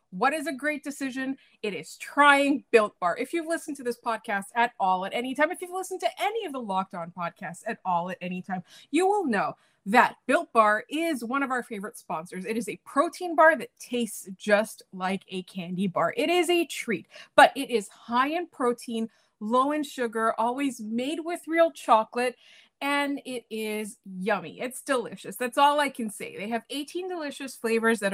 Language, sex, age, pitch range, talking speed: English, female, 20-39, 215-295 Hz, 205 wpm